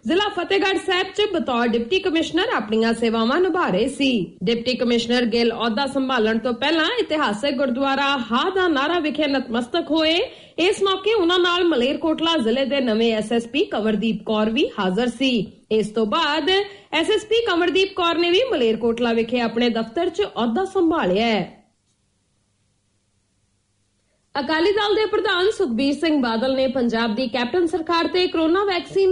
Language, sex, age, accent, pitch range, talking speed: English, female, 30-49, Indian, 230-360 Hz, 110 wpm